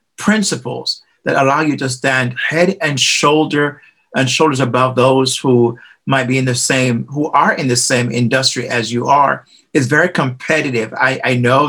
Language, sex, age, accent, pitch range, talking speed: English, male, 50-69, American, 125-150 Hz, 175 wpm